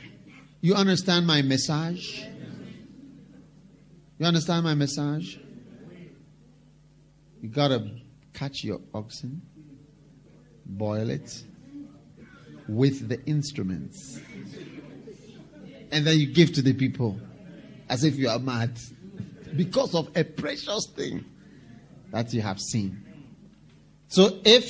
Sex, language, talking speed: male, English, 100 wpm